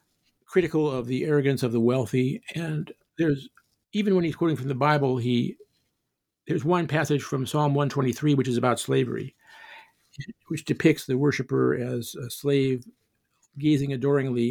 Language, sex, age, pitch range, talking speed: English, male, 50-69, 130-170 Hz, 150 wpm